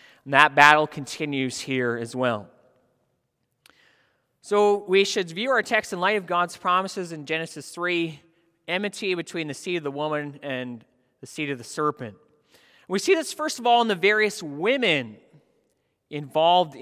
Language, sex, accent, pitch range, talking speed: English, male, American, 145-205 Hz, 160 wpm